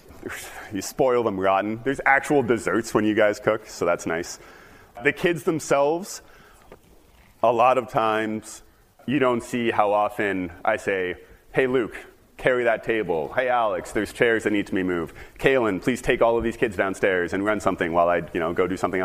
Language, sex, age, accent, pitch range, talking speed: English, male, 30-49, American, 95-125 Hz, 190 wpm